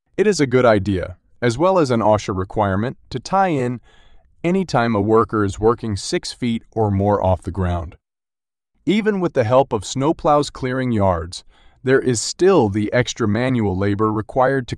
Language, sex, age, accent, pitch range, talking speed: English, male, 30-49, American, 105-145 Hz, 180 wpm